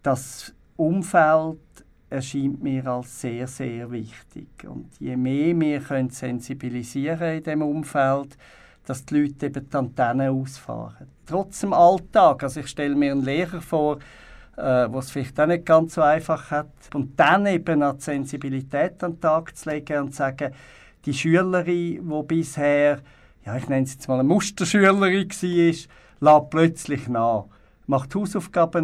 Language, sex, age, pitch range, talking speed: German, male, 60-79, 135-165 Hz, 155 wpm